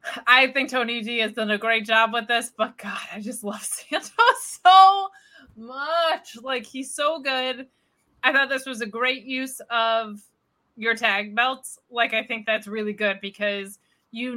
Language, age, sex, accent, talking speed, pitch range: English, 20-39, female, American, 175 wpm, 205-240 Hz